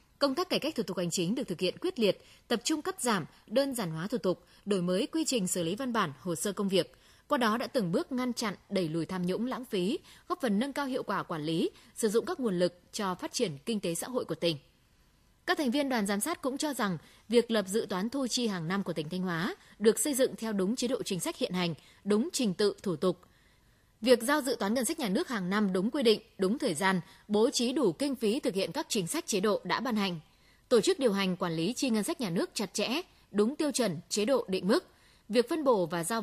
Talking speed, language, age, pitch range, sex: 270 wpm, Vietnamese, 20-39, 185-255 Hz, female